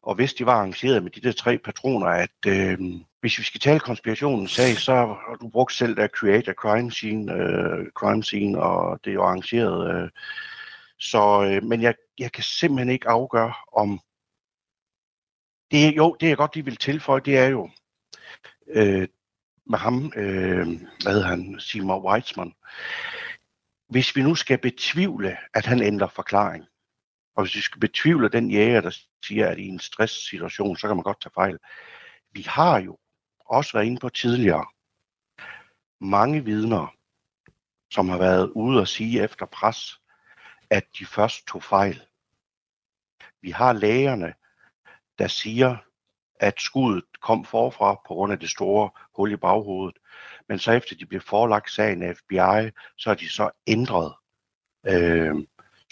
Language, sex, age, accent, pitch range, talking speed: Danish, male, 60-79, native, 95-125 Hz, 160 wpm